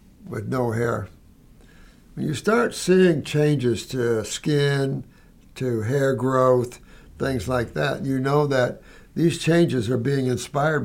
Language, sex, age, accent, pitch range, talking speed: English, male, 60-79, American, 110-140 Hz, 135 wpm